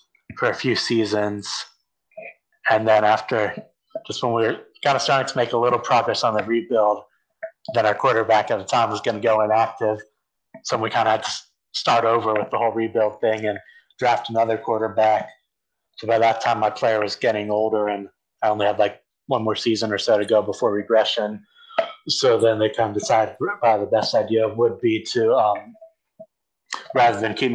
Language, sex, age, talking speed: English, male, 30-49, 195 wpm